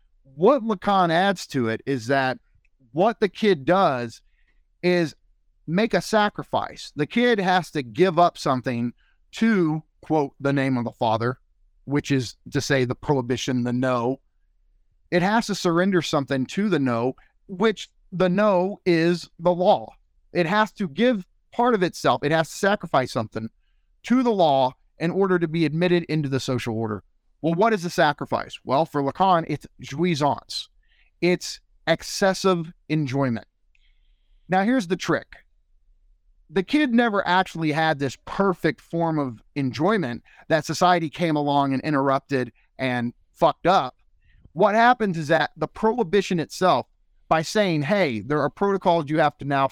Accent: American